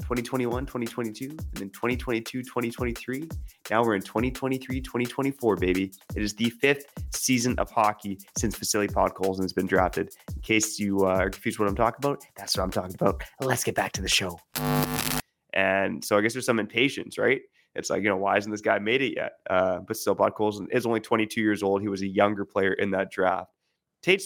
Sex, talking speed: male, 195 wpm